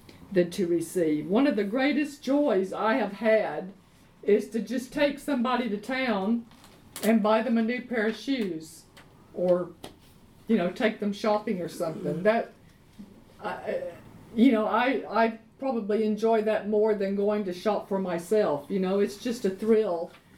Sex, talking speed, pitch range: female, 160 wpm, 190-245 Hz